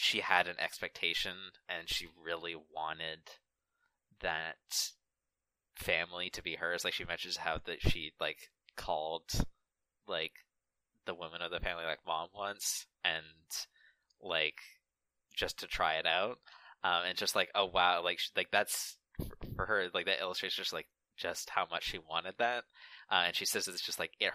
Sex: male